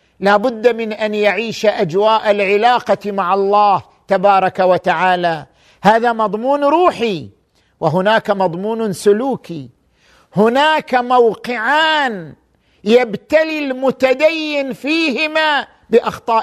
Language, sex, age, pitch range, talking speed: Arabic, male, 50-69, 205-260 Hz, 85 wpm